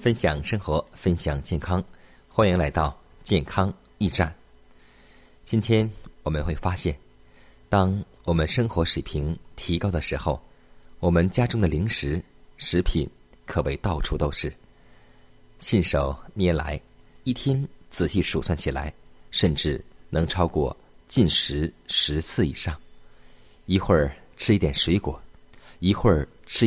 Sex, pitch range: male, 75-95 Hz